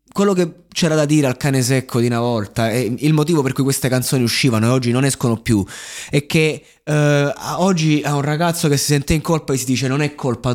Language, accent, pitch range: Italian, native, 120-145 Hz